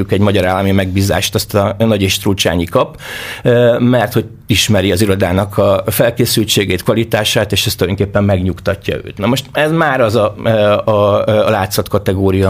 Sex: male